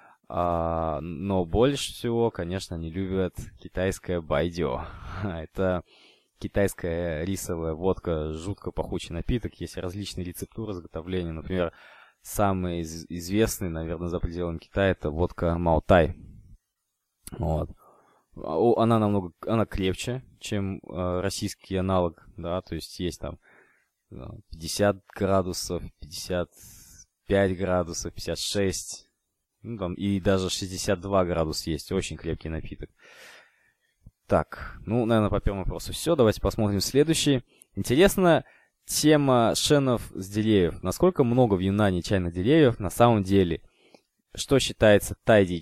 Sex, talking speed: male, 110 wpm